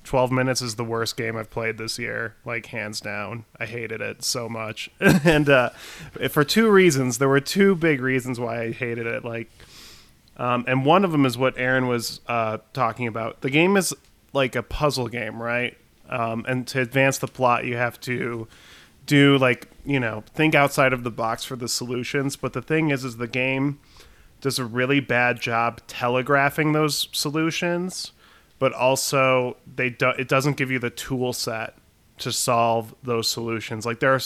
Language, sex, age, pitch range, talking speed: English, male, 20-39, 120-145 Hz, 185 wpm